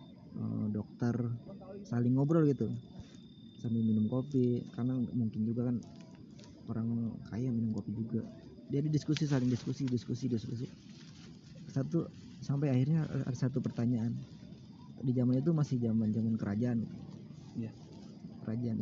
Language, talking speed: Indonesian, 115 wpm